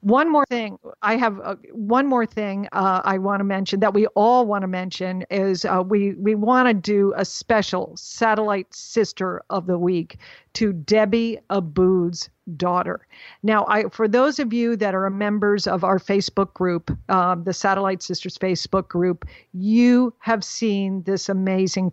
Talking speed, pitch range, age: 170 wpm, 185-225 Hz, 50-69